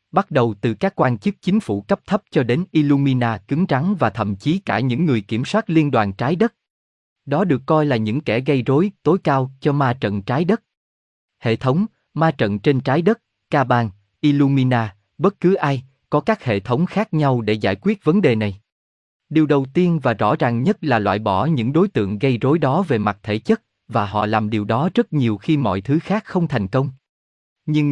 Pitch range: 110-160 Hz